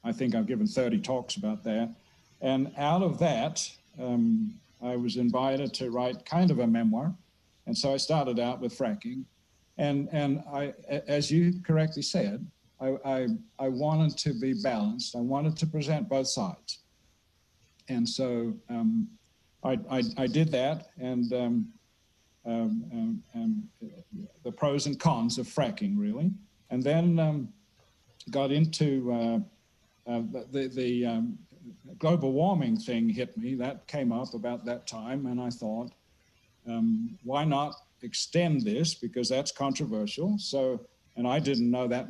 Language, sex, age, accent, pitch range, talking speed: English, male, 60-79, American, 125-195 Hz, 155 wpm